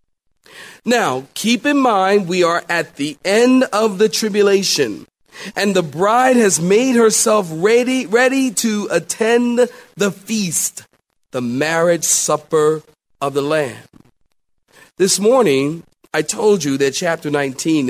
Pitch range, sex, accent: 125-195 Hz, male, American